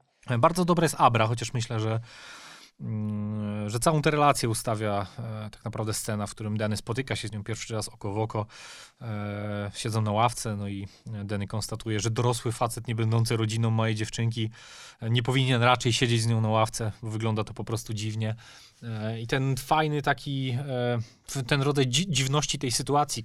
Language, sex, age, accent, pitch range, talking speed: Polish, male, 30-49, native, 110-135 Hz, 180 wpm